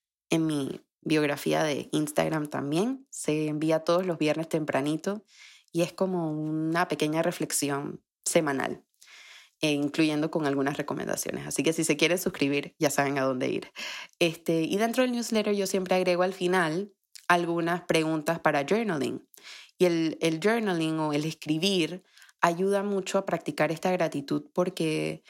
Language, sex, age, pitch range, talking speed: Spanish, female, 20-39, 160-185 Hz, 145 wpm